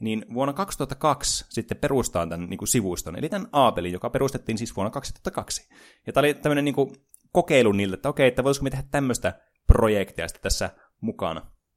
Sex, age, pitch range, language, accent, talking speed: male, 20-39, 95-125 Hz, Finnish, native, 185 wpm